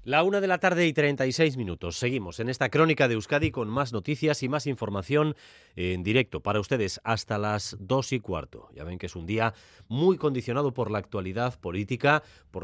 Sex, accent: male, Spanish